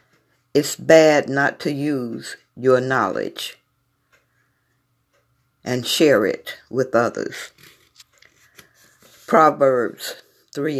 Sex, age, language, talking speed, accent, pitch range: female, 60-79, English, 80 wpm, American, 120-150 Hz